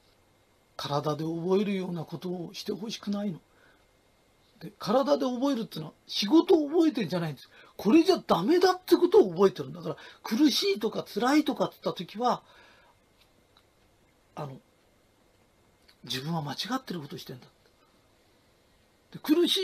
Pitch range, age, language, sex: 185-295 Hz, 40-59, Japanese, male